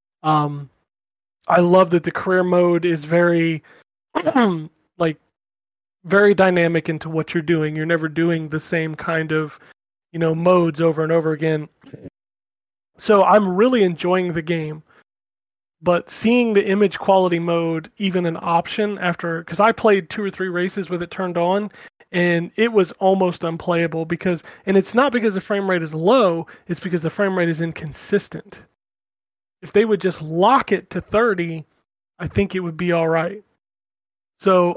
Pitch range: 165-195 Hz